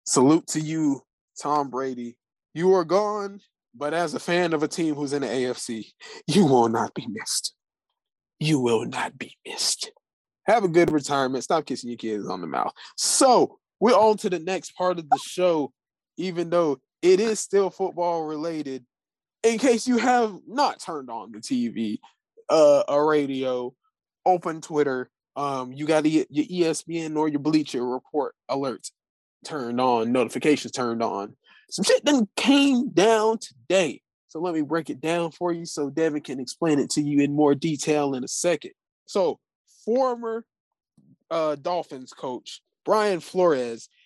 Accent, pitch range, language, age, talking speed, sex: American, 140-190 Hz, English, 20-39, 165 wpm, male